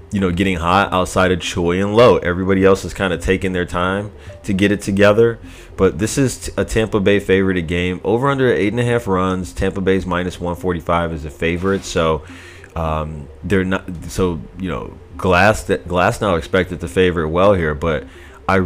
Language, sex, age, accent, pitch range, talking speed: English, male, 30-49, American, 85-95 Hz, 205 wpm